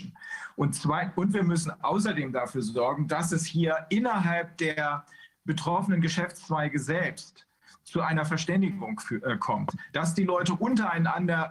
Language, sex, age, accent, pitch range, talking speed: Russian, male, 40-59, German, 150-185 Hz, 125 wpm